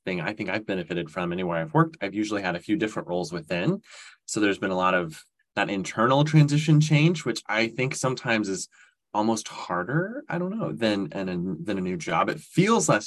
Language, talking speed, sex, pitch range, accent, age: English, 215 wpm, male, 100-150 Hz, American, 20-39